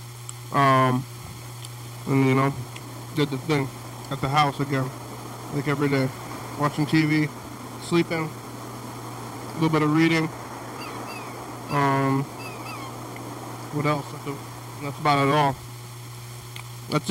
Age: 20-39